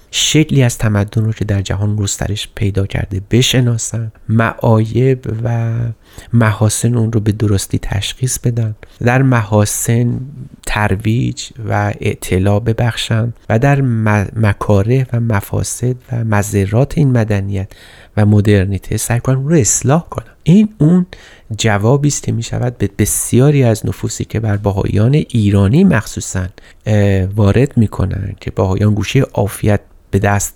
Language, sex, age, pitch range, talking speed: Persian, male, 30-49, 100-125 Hz, 120 wpm